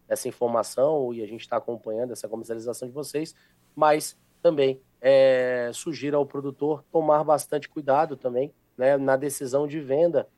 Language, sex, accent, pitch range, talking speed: Portuguese, male, Brazilian, 115-140 Hz, 150 wpm